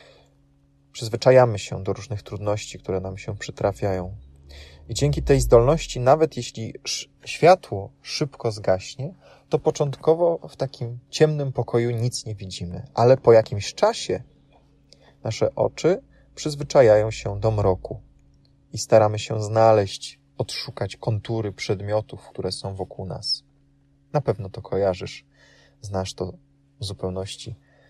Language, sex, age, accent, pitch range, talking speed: Polish, male, 20-39, native, 95-135 Hz, 120 wpm